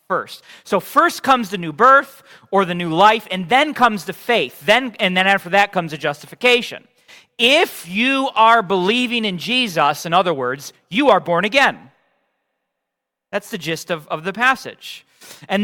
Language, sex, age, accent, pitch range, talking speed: English, male, 40-59, American, 175-245 Hz, 175 wpm